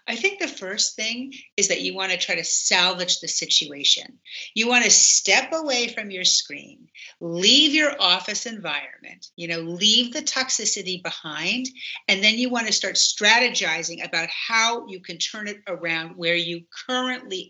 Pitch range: 180-245 Hz